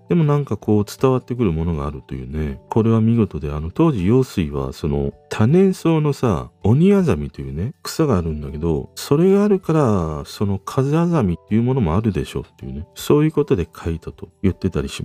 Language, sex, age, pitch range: Japanese, male, 40-59, 90-145 Hz